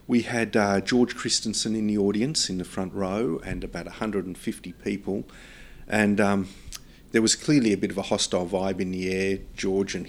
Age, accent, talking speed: 40-59, Australian, 190 wpm